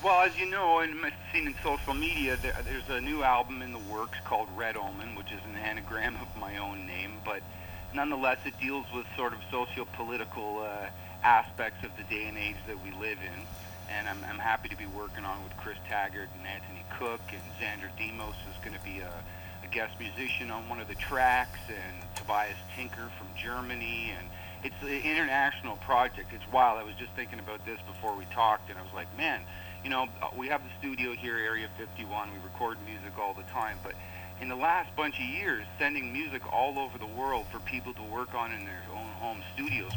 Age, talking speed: 50-69, 215 wpm